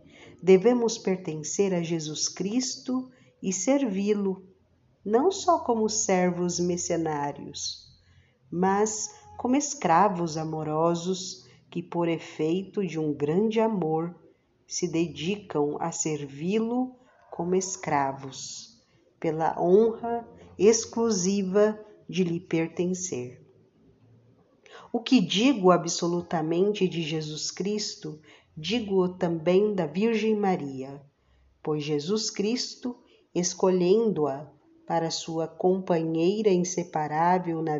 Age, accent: 50-69, Brazilian